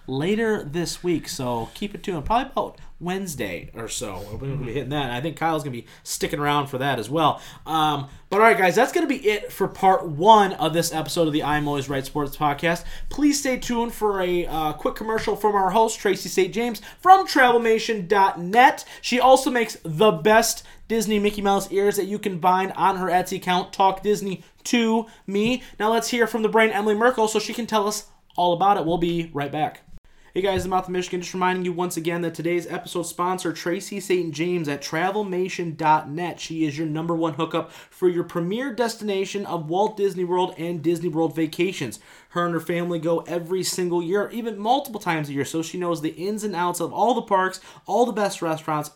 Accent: American